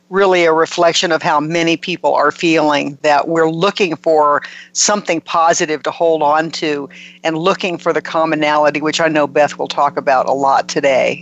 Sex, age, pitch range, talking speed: female, 50-69, 150-175 Hz, 180 wpm